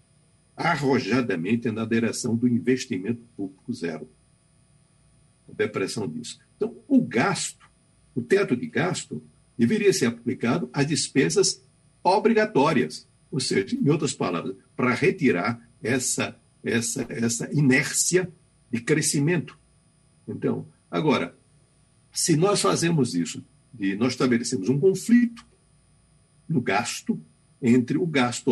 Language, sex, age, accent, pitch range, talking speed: Portuguese, male, 60-79, Brazilian, 125-185 Hz, 105 wpm